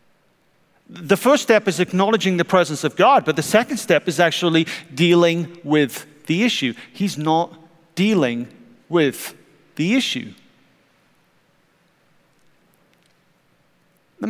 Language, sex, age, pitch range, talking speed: English, male, 50-69, 135-180 Hz, 110 wpm